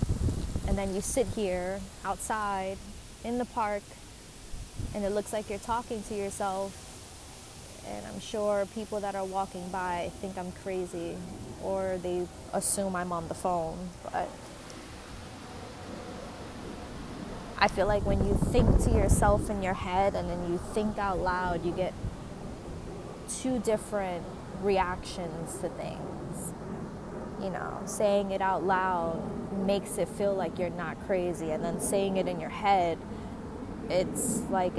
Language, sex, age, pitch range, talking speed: English, female, 20-39, 180-215 Hz, 140 wpm